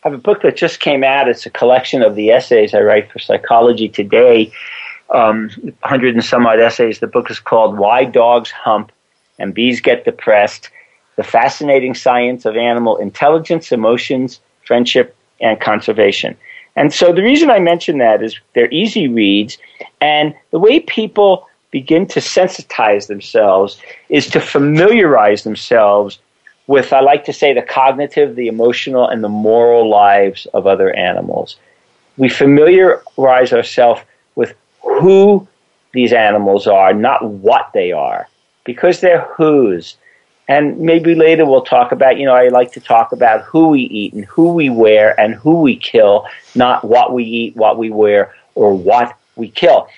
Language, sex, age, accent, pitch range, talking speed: English, male, 50-69, American, 115-170 Hz, 160 wpm